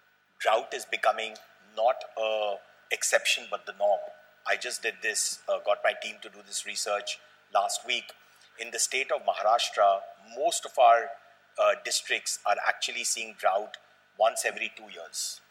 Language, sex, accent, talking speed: English, male, Indian, 160 wpm